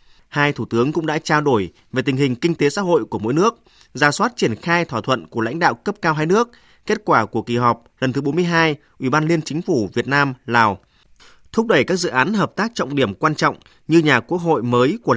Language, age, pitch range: Vietnamese, 20-39, 125-165 Hz